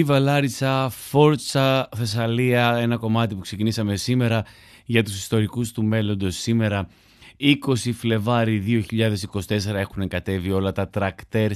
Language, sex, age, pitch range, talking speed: Greek, male, 30-49, 95-120 Hz, 115 wpm